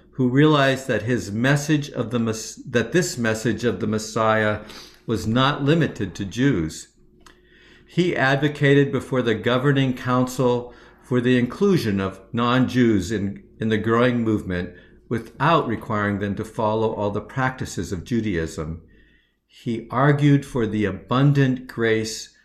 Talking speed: 135 wpm